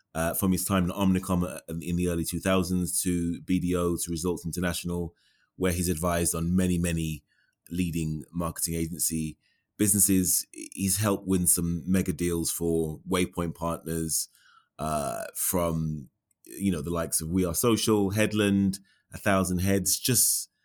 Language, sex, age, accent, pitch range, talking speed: English, male, 20-39, British, 80-95 Hz, 140 wpm